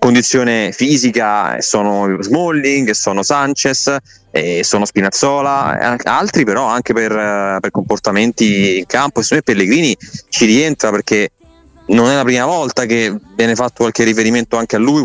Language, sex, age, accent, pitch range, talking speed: Italian, male, 30-49, native, 105-125 Hz, 150 wpm